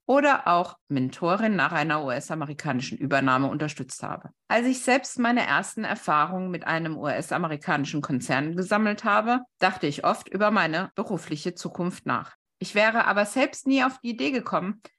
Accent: German